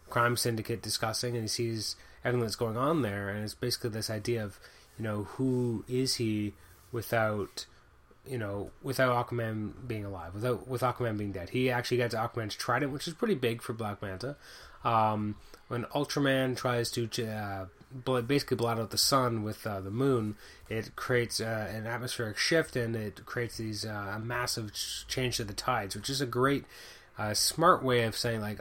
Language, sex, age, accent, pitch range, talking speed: English, male, 20-39, American, 105-125 Hz, 185 wpm